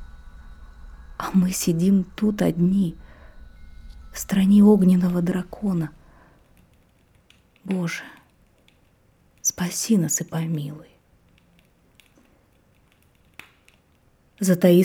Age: 20-39